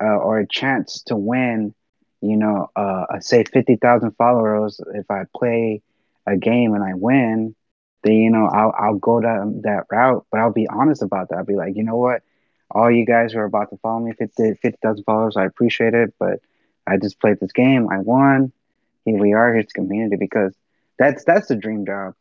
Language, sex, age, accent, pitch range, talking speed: English, male, 20-39, American, 105-120 Hz, 210 wpm